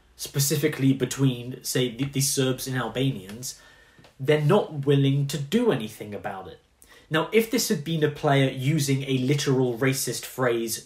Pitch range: 120-150 Hz